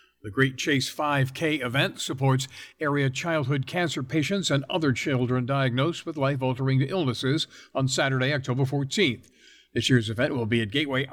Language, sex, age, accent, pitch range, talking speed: English, male, 60-79, American, 120-160 Hz, 150 wpm